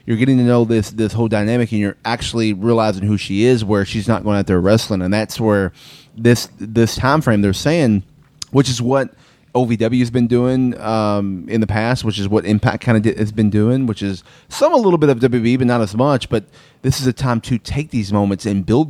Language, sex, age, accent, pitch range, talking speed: English, male, 30-49, American, 100-125 Hz, 240 wpm